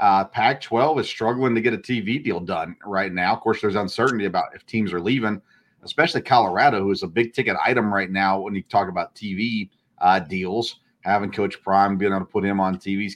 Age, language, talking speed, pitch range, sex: 40-59, English, 220 wpm, 95-115 Hz, male